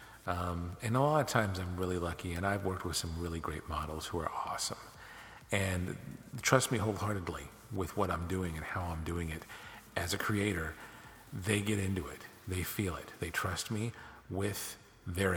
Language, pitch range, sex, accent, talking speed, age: English, 90-115 Hz, male, American, 185 wpm, 50-69